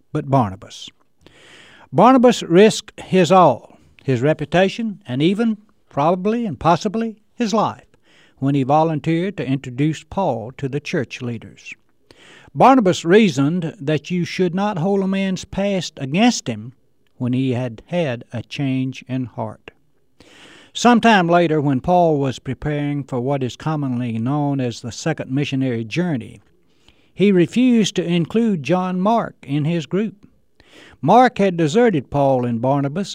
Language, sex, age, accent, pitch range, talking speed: English, male, 60-79, American, 130-185 Hz, 140 wpm